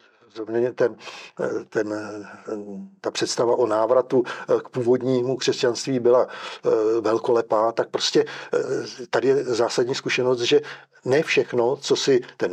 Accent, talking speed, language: native, 115 wpm, Czech